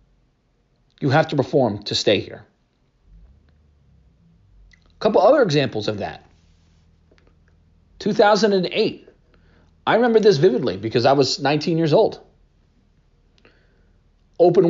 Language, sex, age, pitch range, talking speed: English, male, 40-59, 125-170 Hz, 100 wpm